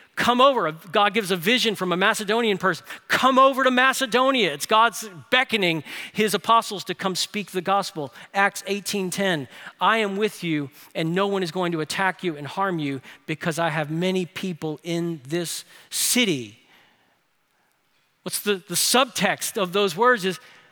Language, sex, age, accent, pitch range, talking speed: English, male, 40-59, American, 165-225 Hz, 165 wpm